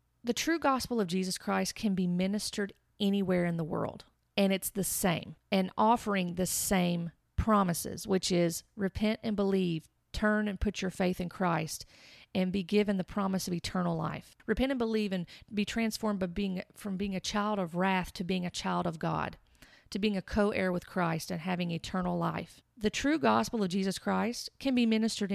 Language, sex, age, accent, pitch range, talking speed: English, female, 40-59, American, 185-220 Hz, 185 wpm